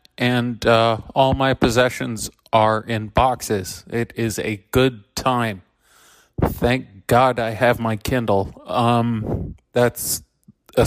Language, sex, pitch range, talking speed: English, male, 110-120 Hz, 120 wpm